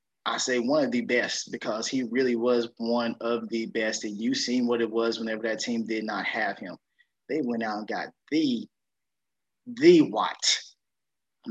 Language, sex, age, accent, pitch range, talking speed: English, male, 20-39, American, 130-200 Hz, 190 wpm